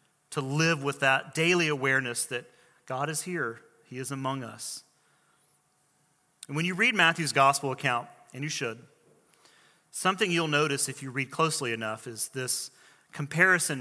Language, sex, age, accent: English, male, 30-49, American